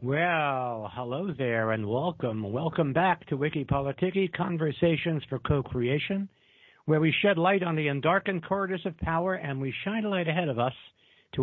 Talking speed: 170 wpm